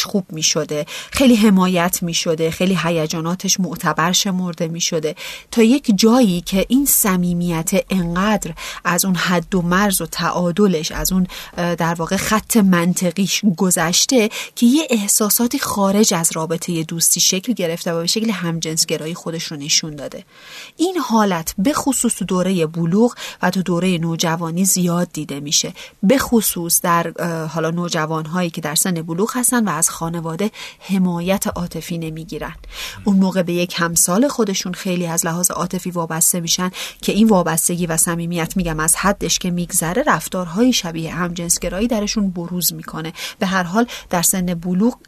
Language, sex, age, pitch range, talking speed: Persian, female, 30-49, 170-205 Hz, 150 wpm